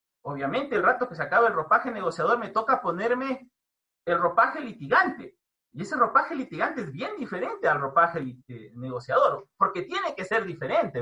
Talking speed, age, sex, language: 170 wpm, 40-59, male, Spanish